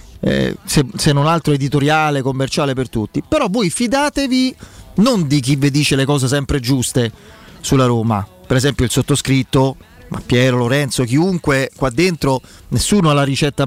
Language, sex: Italian, male